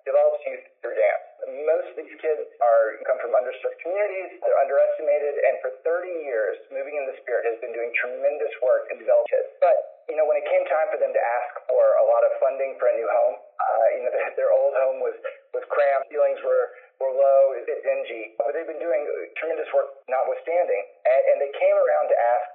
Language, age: English, 30-49